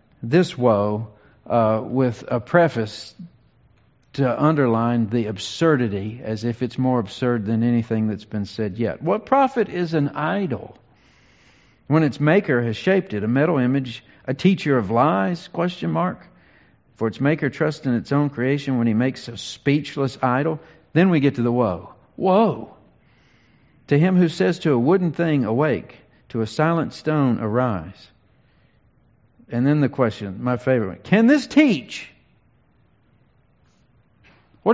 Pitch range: 115-165 Hz